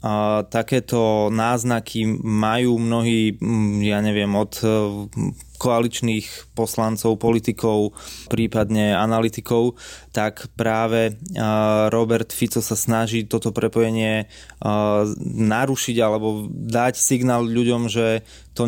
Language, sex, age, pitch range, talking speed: Slovak, male, 20-39, 110-125 Hz, 90 wpm